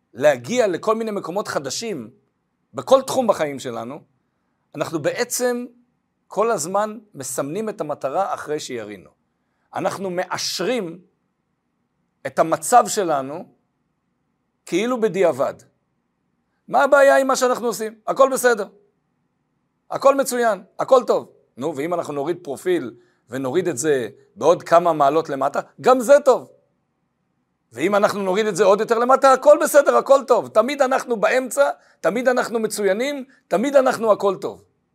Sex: male